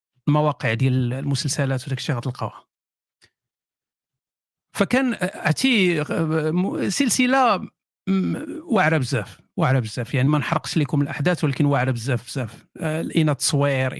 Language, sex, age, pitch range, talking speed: Arabic, male, 50-69, 135-180 Hz, 100 wpm